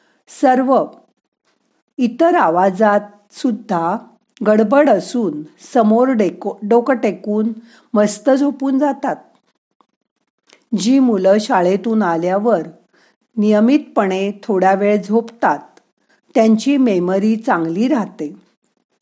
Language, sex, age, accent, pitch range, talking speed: Marathi, female, 50-69, native, 190-255 Hz, 75 wpm